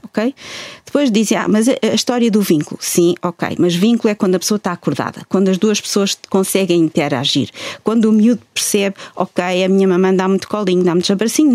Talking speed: 205 wpm